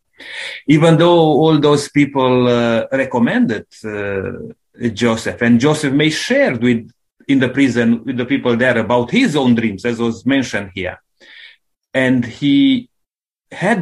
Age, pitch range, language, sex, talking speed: 30-49, 120-165 Hz, English, male, 140 wpm